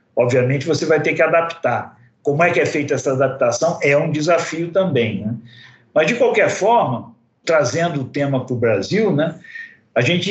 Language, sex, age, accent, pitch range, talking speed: Portuguese, male, 60-79, Brazilian, 140-195 Hz, 180 wpm